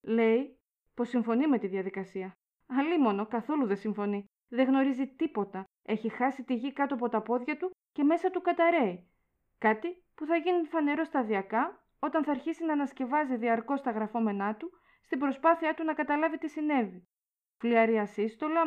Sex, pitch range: female, 215-300 Hz